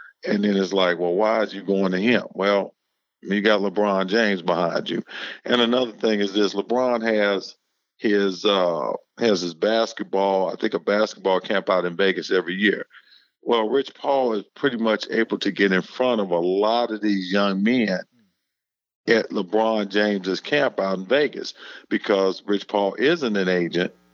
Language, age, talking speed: English, 50-69, 175 wpm